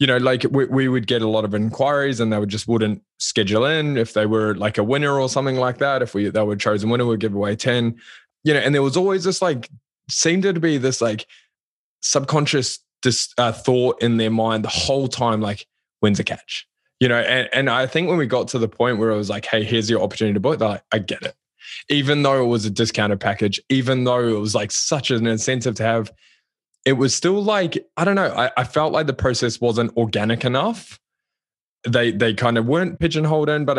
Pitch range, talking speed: 110-135 Hz, 240 wpm